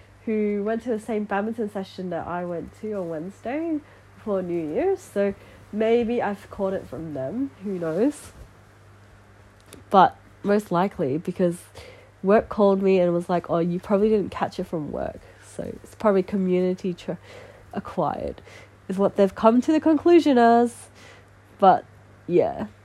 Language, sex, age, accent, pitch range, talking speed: English, female, 20-39, Australian, 170-215 Hz, 150 wpm